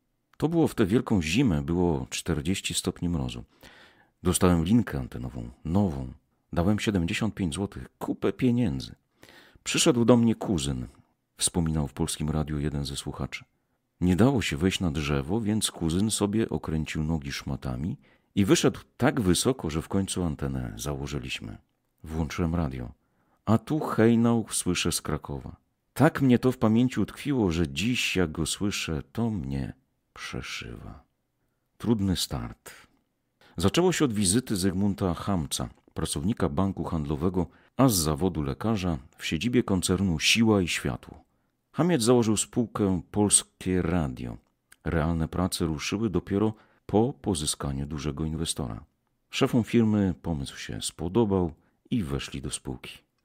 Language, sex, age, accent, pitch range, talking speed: Polish, male, 50-69, native, 80-110 Hz, 130 wpm